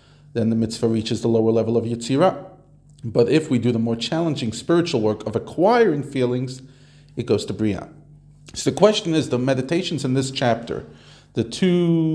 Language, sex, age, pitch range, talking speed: English, male, 40-59, 115-145 Hz, 180 wpm